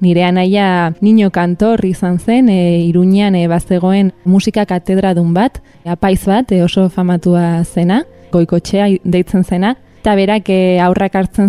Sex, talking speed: female, 140 wpm